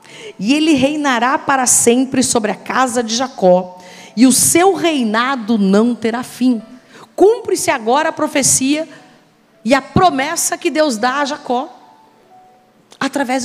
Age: 40-59